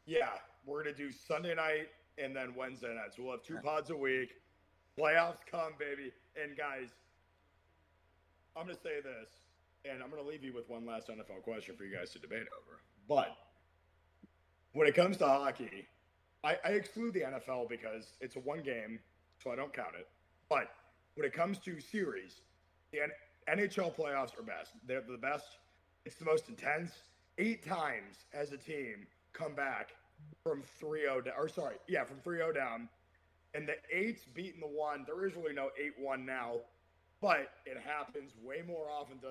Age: 30-49